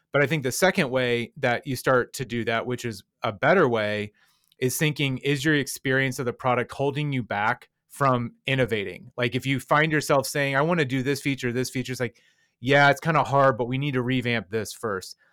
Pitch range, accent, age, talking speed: 120-145 Hz, American, 30-49, 225 wpm